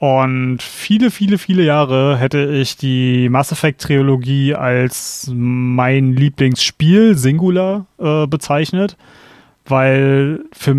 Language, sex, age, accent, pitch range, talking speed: German, male, 30-49, German, 130-165 Hz, 105 wpm